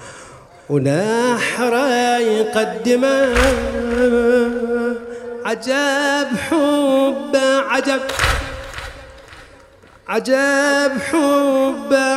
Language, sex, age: English, male, 30-49